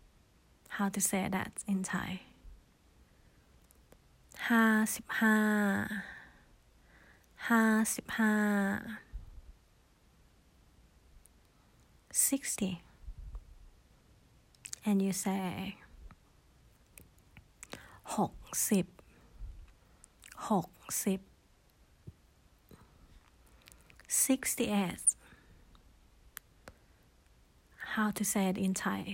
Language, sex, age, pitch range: Thai, female, 30-49, 185-220 Hz